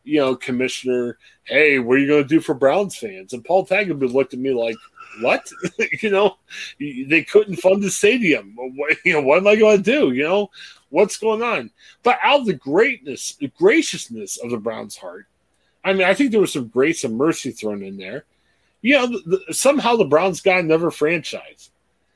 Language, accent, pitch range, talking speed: English, American, 145-220 Hz, 205 wpm